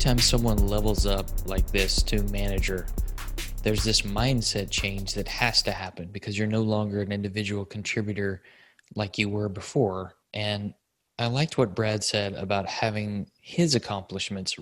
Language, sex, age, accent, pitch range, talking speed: English, male, 20-39, American, 100-115 Hz, 150 wpm